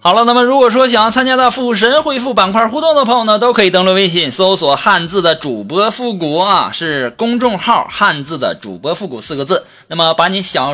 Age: 20-39